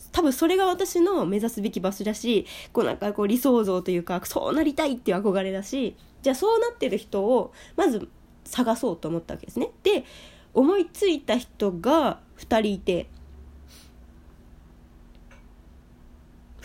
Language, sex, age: Japanese, female, 20-39